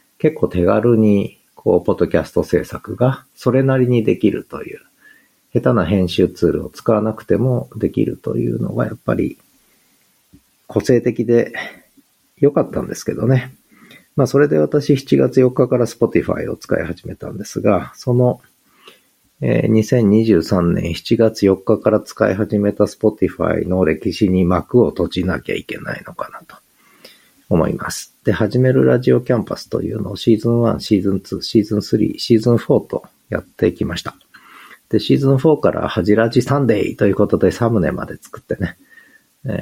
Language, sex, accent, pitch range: Japanese, male, native, 105-125 Hz